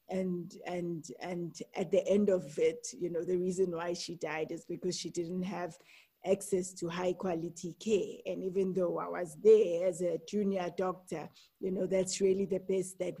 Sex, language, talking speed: female, English, 190 wpm